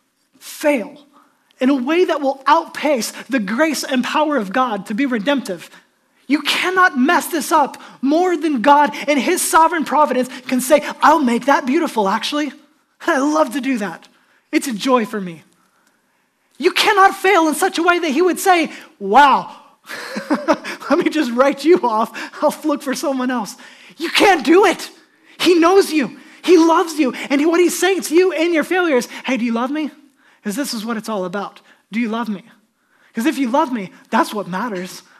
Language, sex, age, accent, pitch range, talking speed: English, male, 20-39, American, 250-315 Hz, 190 wpm